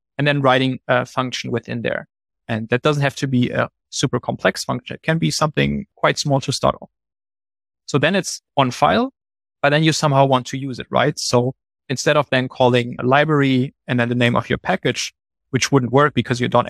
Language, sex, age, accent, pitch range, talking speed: English, male, 30-49, German, 120-140 Hz, 215 wpm